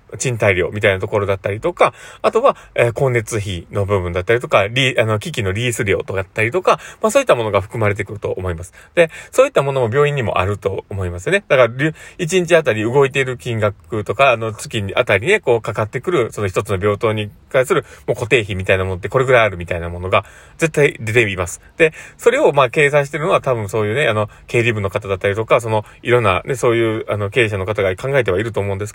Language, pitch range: Japanese, 100-145 Hz